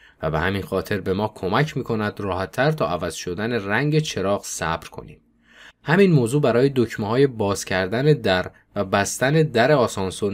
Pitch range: 95-130 Hz